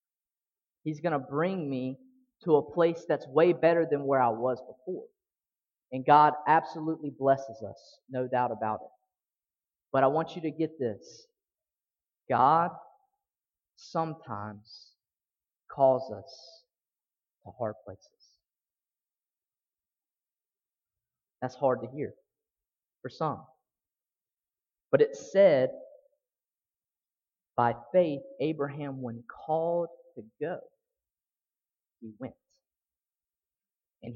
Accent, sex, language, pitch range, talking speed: American, male, English, 135-200 Hz, 100 wpm